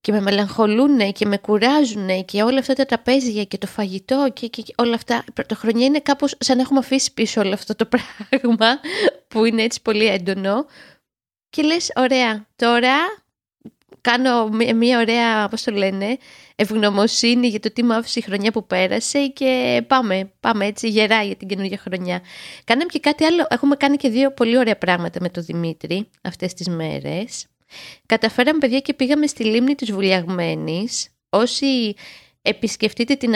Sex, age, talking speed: female, 20-39, 165 wpm